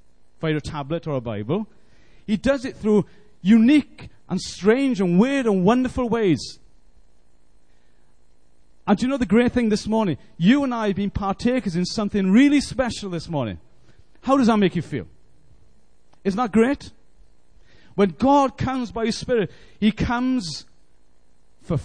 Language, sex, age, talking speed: English, male, 40-59, 155 wpm